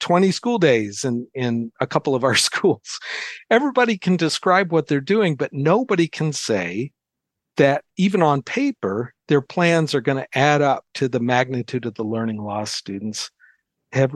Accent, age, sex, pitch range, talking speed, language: American, 50-69, male, 125-160 Hz, 170 wpm, English